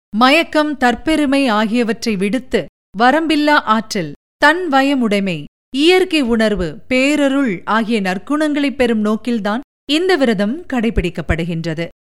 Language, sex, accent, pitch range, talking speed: Tamil, female, native, 220-295 Hz, 90 wpm